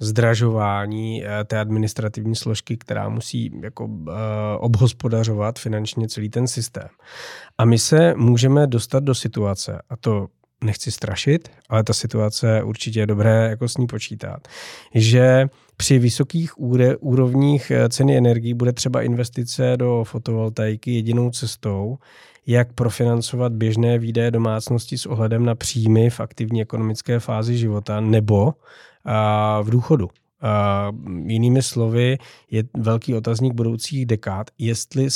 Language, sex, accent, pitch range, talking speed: Czech, male, native, 110-125 Hz, 120 wpm